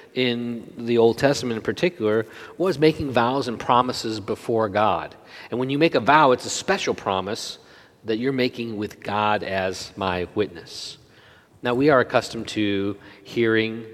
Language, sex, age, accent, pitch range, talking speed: English, male, 40-59, American, 105-125 Hz, 160 wpm